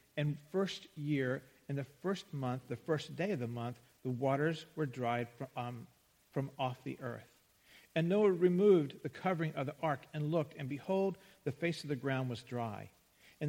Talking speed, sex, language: 185 wpm, male, English